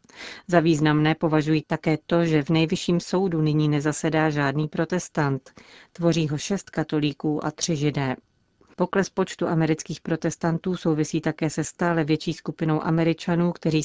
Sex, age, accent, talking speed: female, 40-59, native, 140 wpm